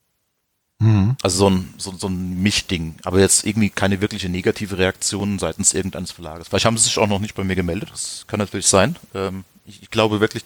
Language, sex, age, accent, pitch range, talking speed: German, male, 40-59, German, 95-110 Hz, 210 wpm